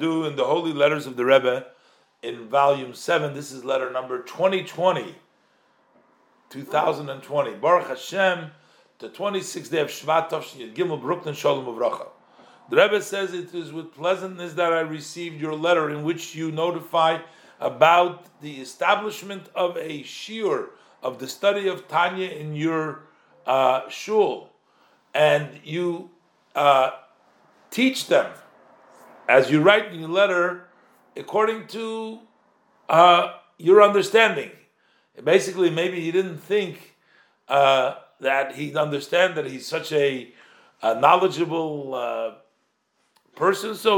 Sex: male